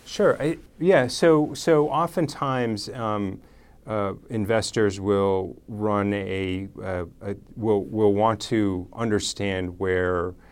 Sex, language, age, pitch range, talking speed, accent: male, English, 30-49, 90-105 Hz, 115 wpm, American